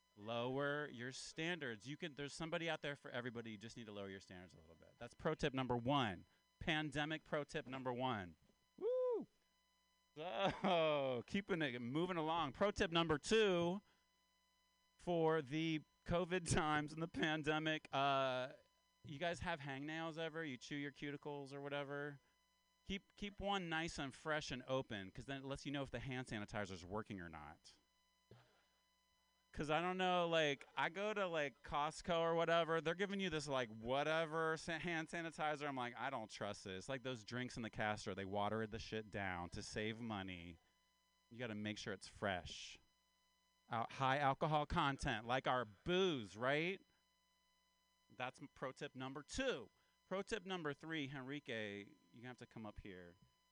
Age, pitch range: 30-49, 125-165 Hz